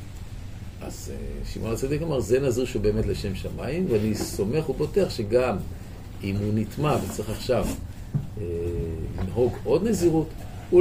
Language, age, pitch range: Hebrew, 50-69, 100-125 Hz